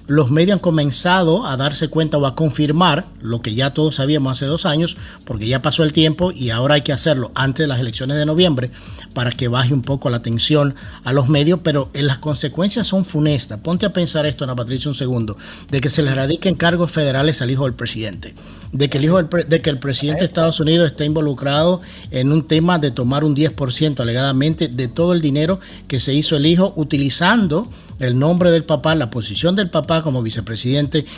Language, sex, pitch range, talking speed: English, male, 130-165 Hz, 210 wpm